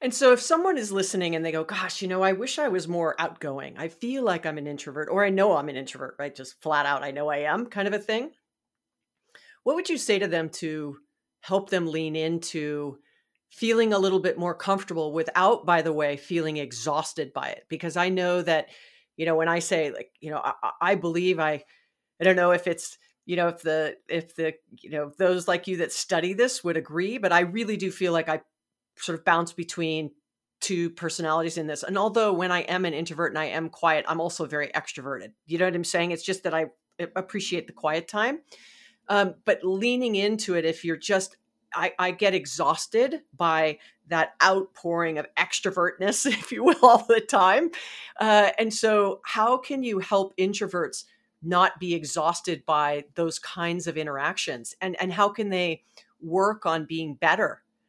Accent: American